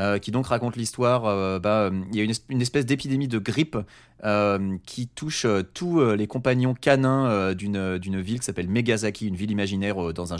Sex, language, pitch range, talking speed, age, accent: male, French, 95-125 Hz, 195 wpm, 30-49, French